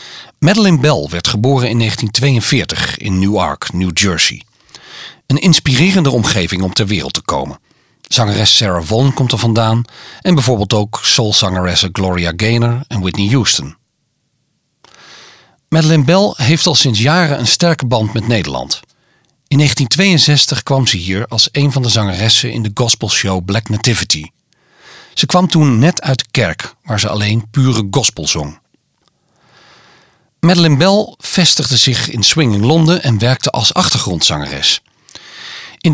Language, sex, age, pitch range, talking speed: Dutch, male, 40-59, 105-145 Hz, 140 wpm